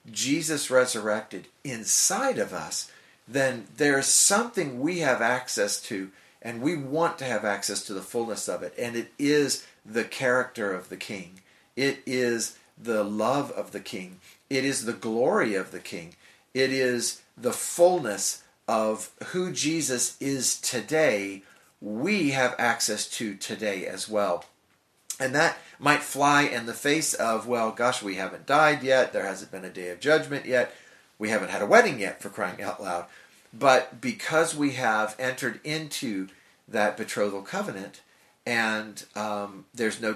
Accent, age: American, 50-69